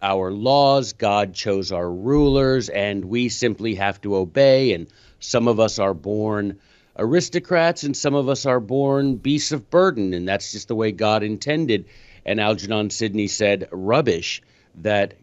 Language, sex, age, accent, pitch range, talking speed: English, male, 50-69, American, 105-130 Hz, 160 wpm